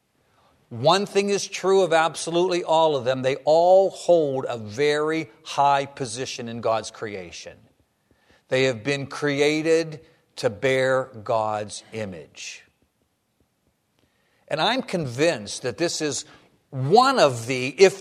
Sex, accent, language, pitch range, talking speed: male, American, English, 130-180 Hz, 125 wpm